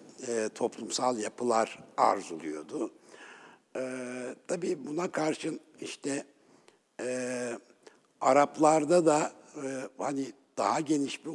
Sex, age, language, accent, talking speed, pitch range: male, 60-79, Turkish, native, 90 wpm, 115-160 Hz